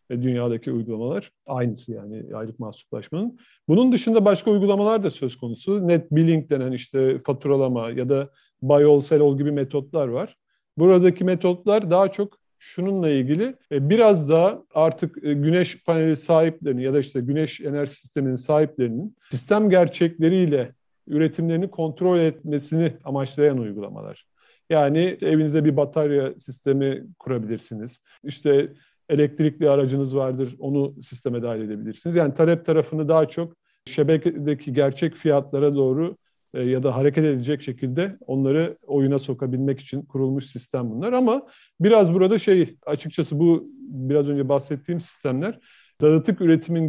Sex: male